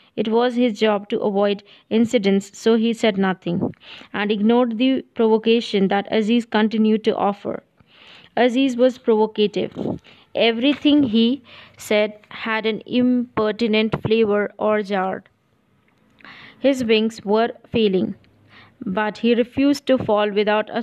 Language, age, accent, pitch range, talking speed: English, 20-39, Indian, 210-240 Hz, 125 wpm